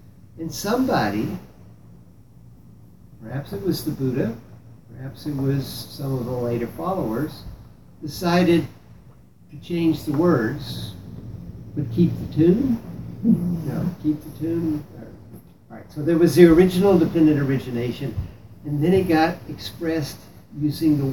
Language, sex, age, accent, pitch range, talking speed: English, male, 60-79, American, 120-165 Hz, 125 wpm